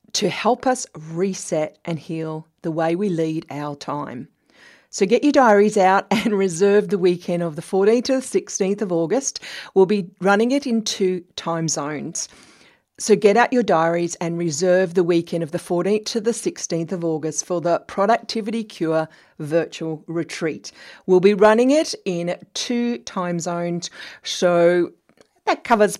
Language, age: English, 40-59